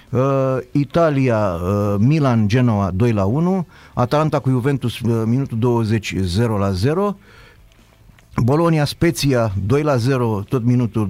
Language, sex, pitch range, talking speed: Romanian, male, 110-135 Hz, 130 wpm